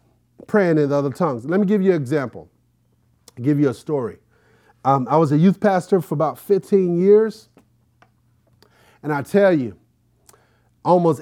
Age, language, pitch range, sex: 30-49, English, 135-185 Hz, male